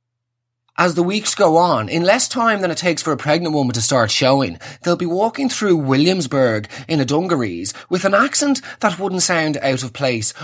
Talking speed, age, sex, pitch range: 200 wpm, 30-49, male, 125-200 Hz